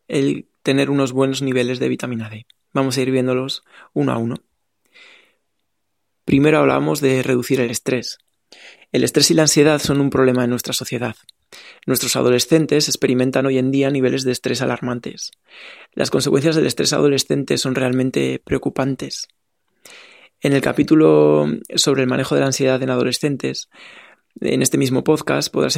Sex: male